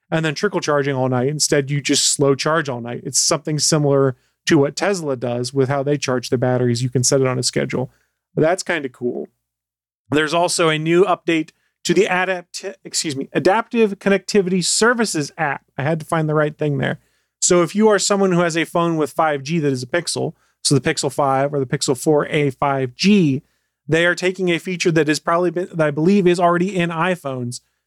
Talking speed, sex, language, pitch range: 215 wpm, male, English, 140-175 Hz